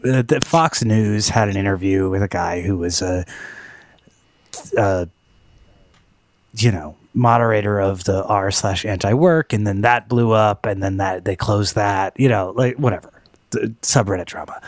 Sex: male